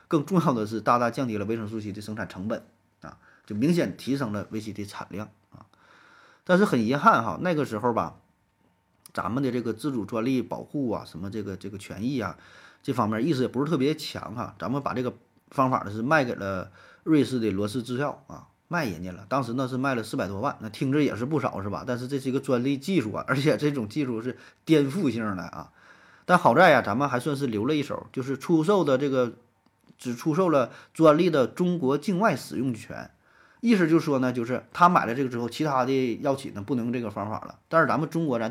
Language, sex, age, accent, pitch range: Chinese, male, 30-49, native, 110-155 Hz